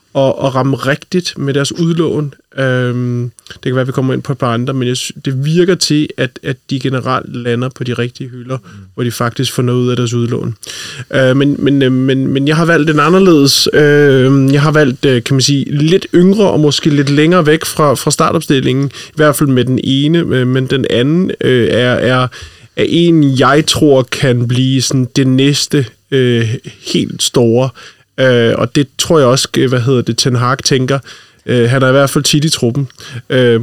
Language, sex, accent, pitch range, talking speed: Danish, male, native, 120-140 Hz, 185 wpm